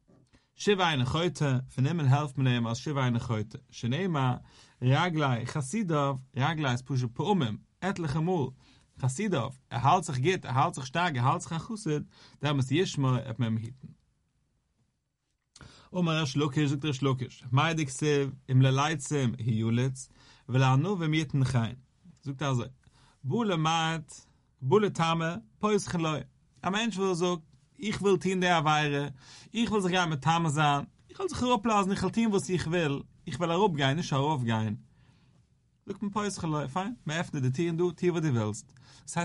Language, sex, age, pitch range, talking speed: English, male, 40-59, 130-170 Hz, 110 wpm